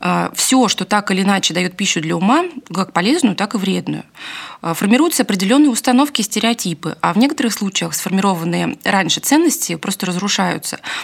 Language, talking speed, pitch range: Russian, 150 wpm, 180-235 Hz